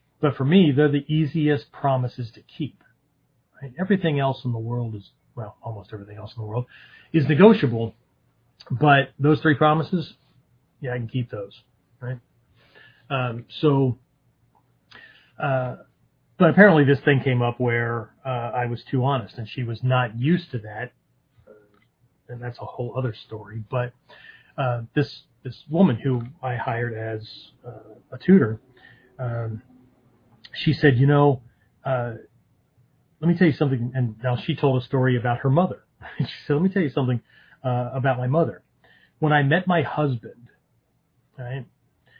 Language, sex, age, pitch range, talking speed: English, male, 30-49, 120-140 Hz, 165 wpm